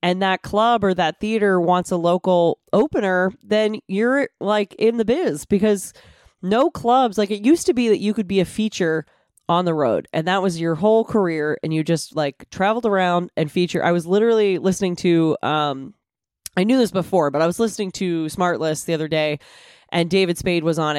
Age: 20-39